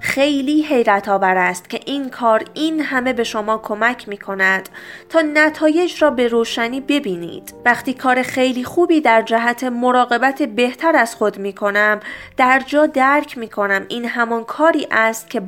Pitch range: 215-290 Hz